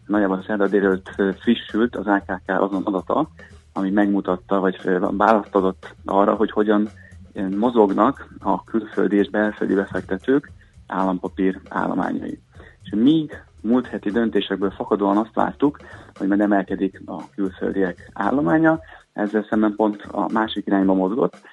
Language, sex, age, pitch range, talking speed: Hungarian, male, 30-49, 95-105 Hz, 125 wpm